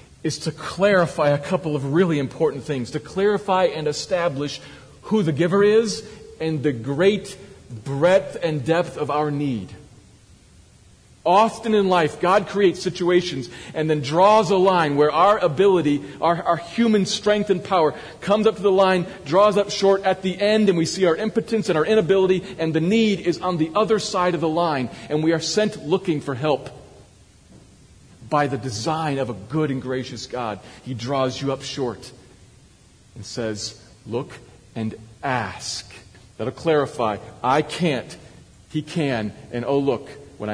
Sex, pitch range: male, 120-185 Hz